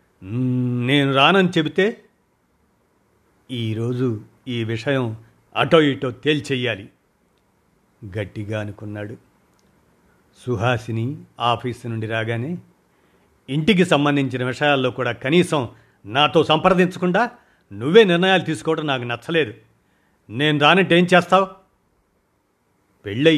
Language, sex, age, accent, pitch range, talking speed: Telugu, male, 50-69, native, 115-160 Hz, 80 wpm